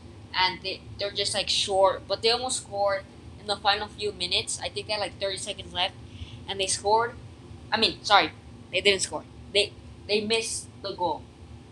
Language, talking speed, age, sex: English, 190 wpm, 20-39, female